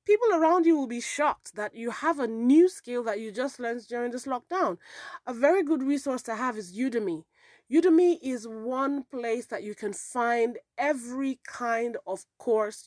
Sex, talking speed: female, 180 wpm